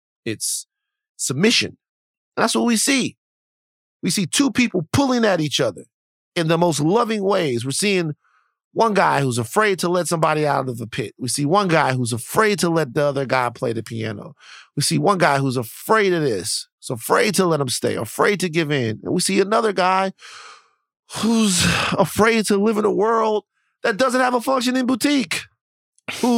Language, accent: English, American